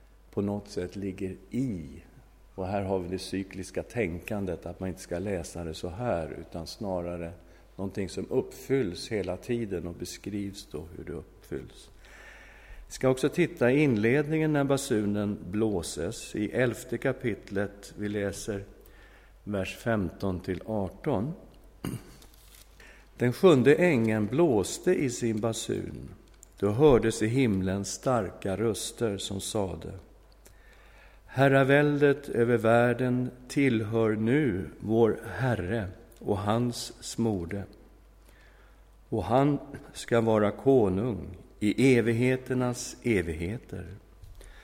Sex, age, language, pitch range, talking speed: male, 50-69, English, 95-130 Hz, 115 wpm